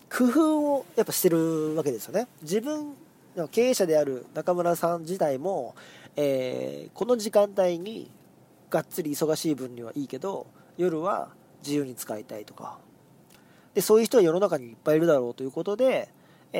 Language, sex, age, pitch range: Japanese, male, 40-59, 140-180 Hz